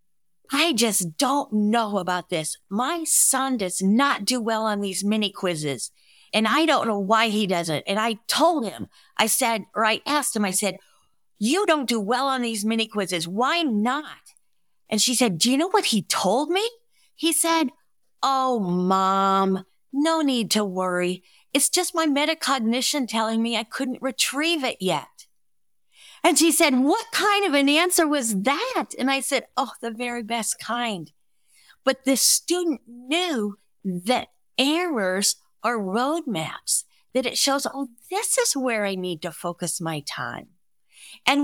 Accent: American